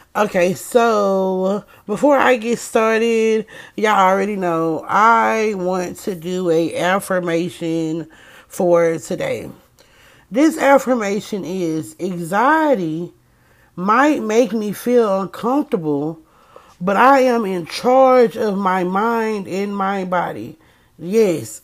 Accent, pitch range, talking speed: American, 170-230 Hz, 105 wpm